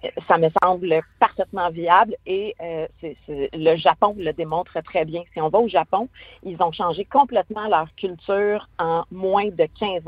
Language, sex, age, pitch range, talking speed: French, female, 40-59, 165-215 Hz, 180 wpm